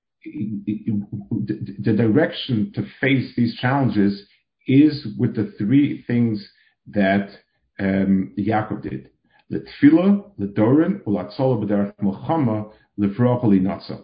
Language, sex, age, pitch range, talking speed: English, male, 50-69, 100-135 Hz, 85 wpm